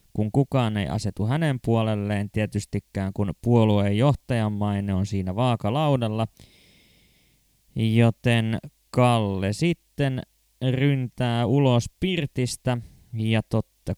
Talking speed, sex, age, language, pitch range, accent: 95 wpm, male, 20-39, Finnish, 105-125 Hz, native